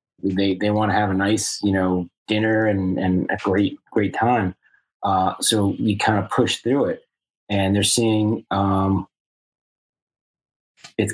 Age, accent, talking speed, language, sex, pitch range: 30-49, American, 155 wpm, English, male, 95-110 Hz